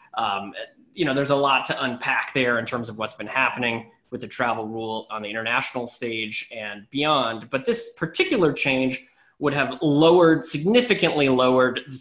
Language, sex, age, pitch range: English, male, 20-39, 115-155 Hz